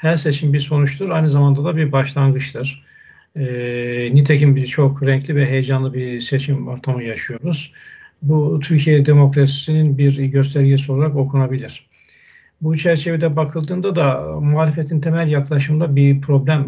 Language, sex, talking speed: Turkish, male, 130 wpm